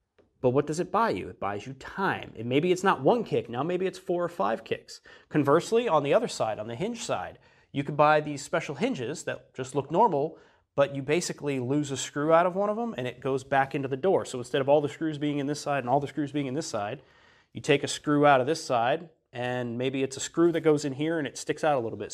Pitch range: 135-165 Hz